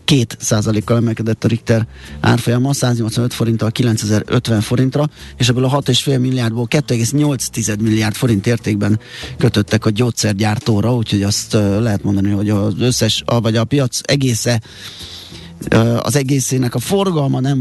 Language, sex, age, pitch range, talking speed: Hungarian, male, 30-49, 105-125 Hz, 125 wpm